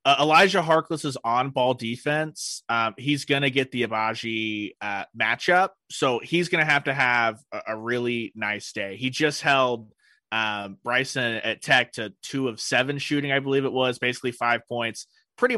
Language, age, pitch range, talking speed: English, 30-49, 120-155 Hz, 185 wpm